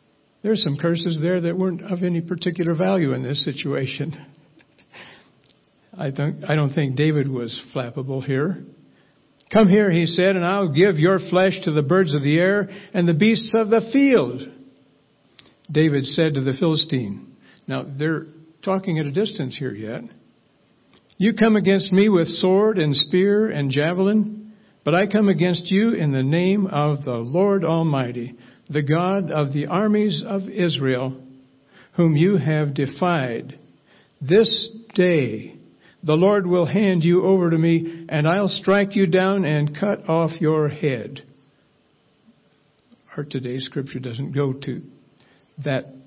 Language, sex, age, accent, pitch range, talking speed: English, male, 60-79, American, 140-190 Hz, 150 wpm